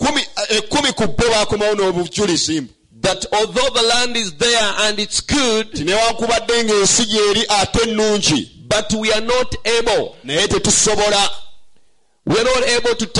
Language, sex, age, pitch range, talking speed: English, male, 50-69, 210-250 Hz, 75 wpm